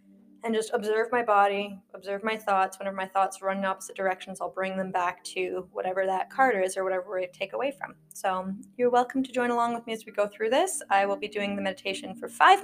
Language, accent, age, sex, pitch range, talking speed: English, American, 20-39, female, 195-245 Hz, 240 wpm